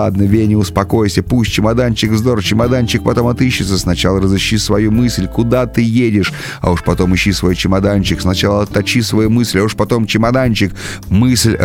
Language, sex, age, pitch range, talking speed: Russian, male, 30-49, 95-110 Hz, 160 wpm